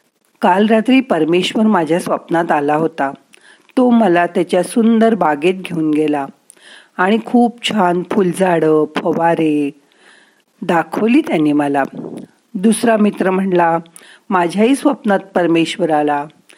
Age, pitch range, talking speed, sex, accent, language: 50-69, 170-225 Hz, 105 wpm, female, native, Marathi